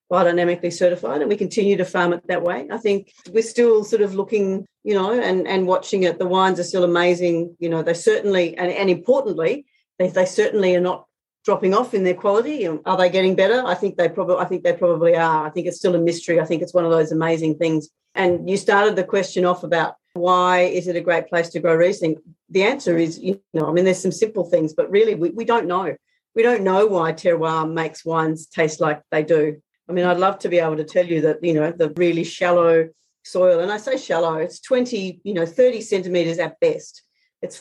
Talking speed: 235 wpm